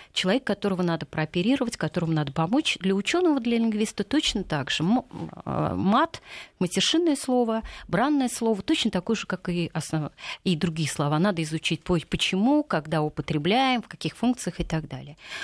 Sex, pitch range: female, 170-235 Hz